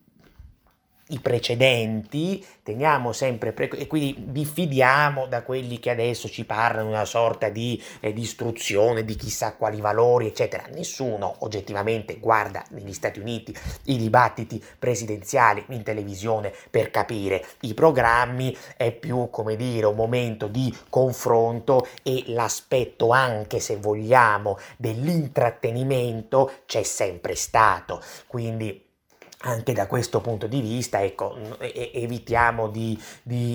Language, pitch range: Italian, 110-130 Hz